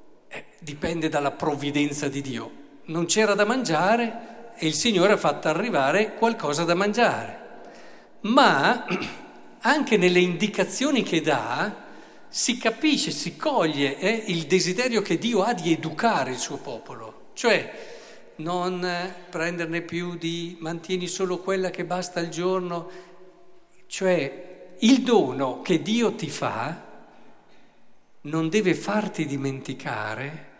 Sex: male